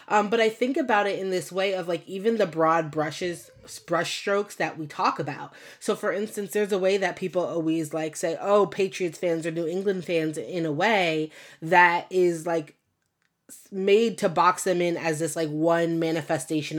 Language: English